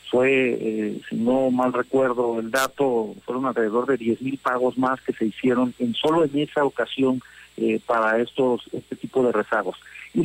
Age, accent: 50-69, Mexican